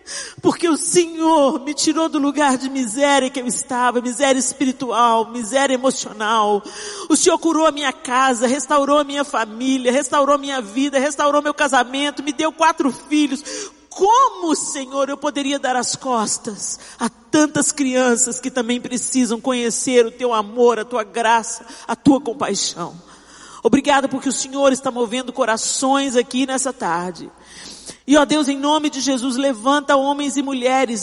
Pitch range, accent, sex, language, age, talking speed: 255-310 Hz, Brazilian, male, Portuguese, 40-59, 155 wpm